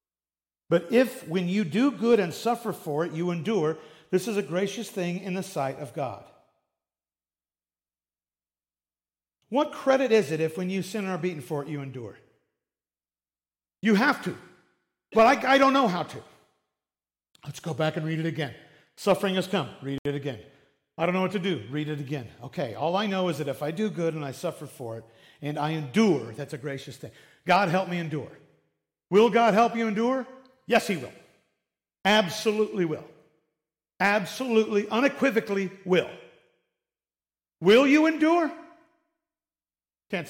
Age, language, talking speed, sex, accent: 50-69, English, 165 wpm, male, American